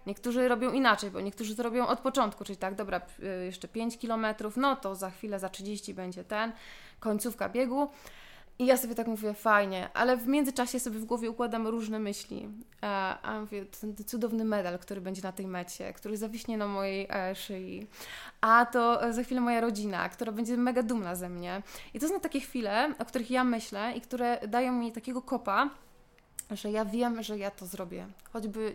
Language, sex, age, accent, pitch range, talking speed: Polish, female, 20-39, native, 195-235 Hz, 190 wpm